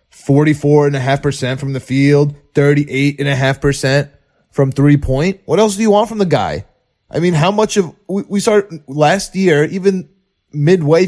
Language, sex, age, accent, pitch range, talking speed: English, male, 20-39, American, 140-180 Hz, 205 wpm